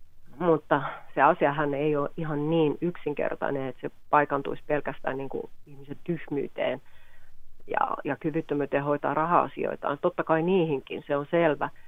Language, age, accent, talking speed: Finnish, 30-49, native, 135 wpm